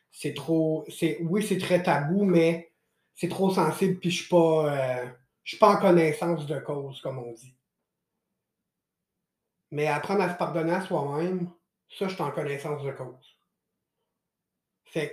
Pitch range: 155-190 Hz